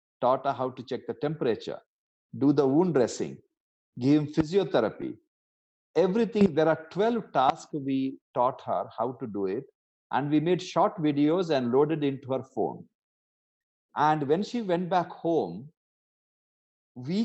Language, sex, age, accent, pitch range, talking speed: English, male, 40-59, Indian, 135-190 Hz, 150 wpm